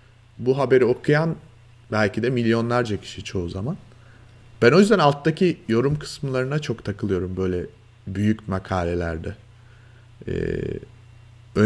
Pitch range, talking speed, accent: 105-125 Hz, 110 wpm, native